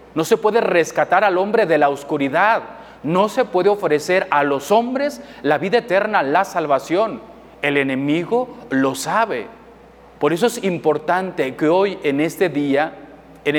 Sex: male